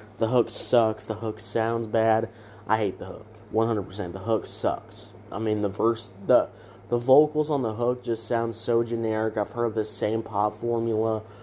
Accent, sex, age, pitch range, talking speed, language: American, male, 20-39, 100-115 Hz, 190 wpm, English